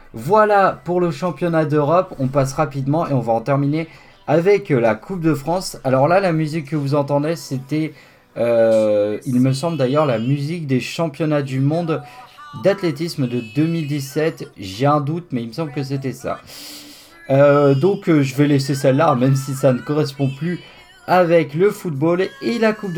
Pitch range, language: 140-175 Hz, French